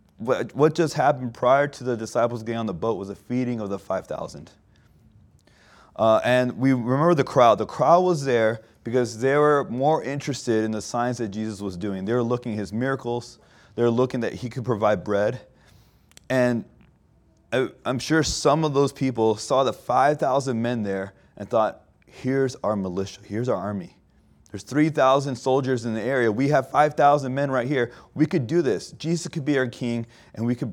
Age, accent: 30-49, American